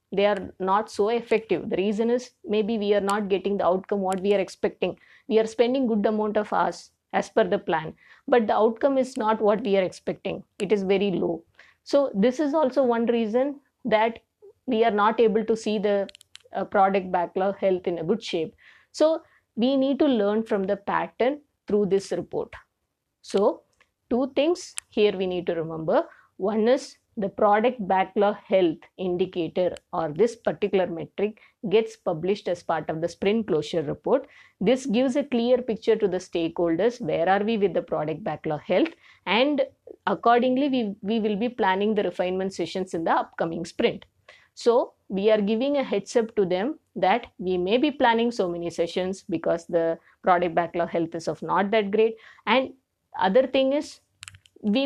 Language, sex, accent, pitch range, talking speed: English, female, Indian, 190-240 Hz, 180 wpm